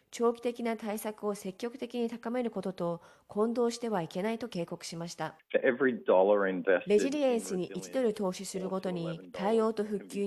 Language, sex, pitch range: Japanese, female, 180-230 Hz